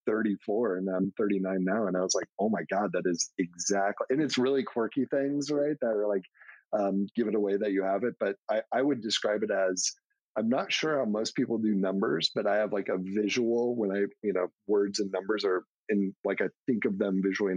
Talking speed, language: 230 wpm, English